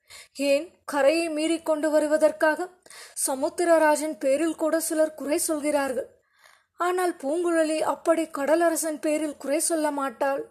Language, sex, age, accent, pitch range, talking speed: Tamil, female, 20-39, native, 290-330 Hz, 105 wpm